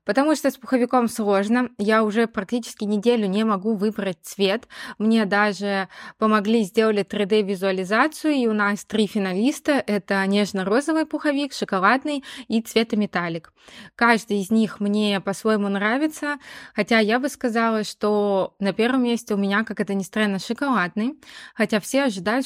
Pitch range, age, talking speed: 200-240 Hz, 20-39, 145 wpm